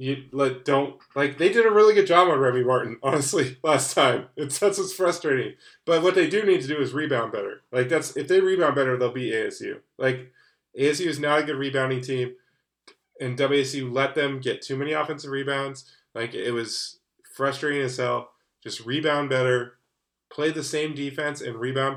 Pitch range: 130-155 Hz